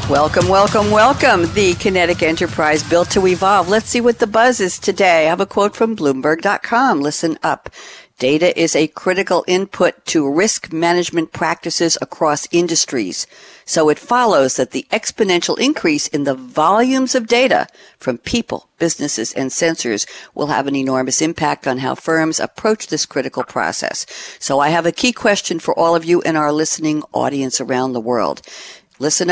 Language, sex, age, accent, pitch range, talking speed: English, female, 60-79, American, 145-195 Hz, 170 wpm